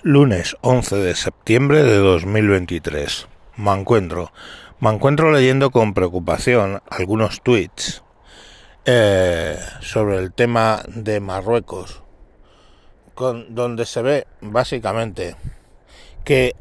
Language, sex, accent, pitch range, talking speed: Spanish, male, Spanish, 95-115 Hz, 95 wpm